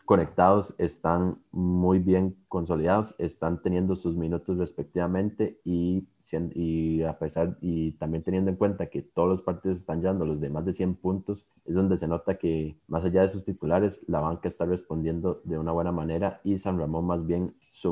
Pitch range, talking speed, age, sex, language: 80-95 Hz, 185 wpm, 20-39, male, Spanish